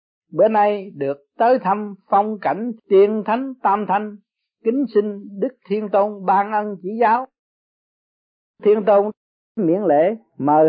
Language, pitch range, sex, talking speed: Vietnamese, 180-225 Hz, male, 140 wpm